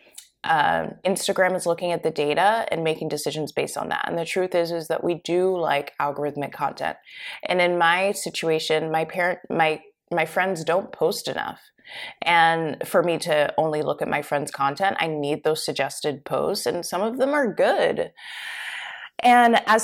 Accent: American